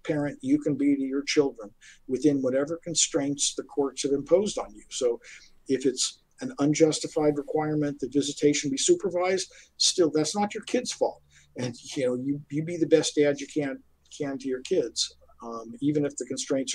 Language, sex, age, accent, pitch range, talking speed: English, male, 50-69, American, 130-160 Hz, 185 wpm